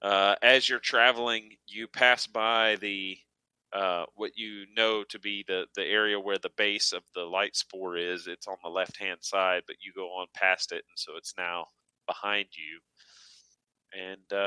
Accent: American